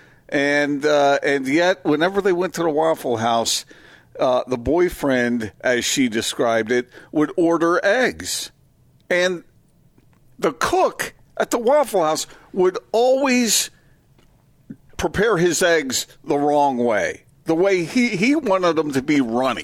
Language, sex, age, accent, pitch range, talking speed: English, male, 50-69, American, 130-170 Hz, 140 wpm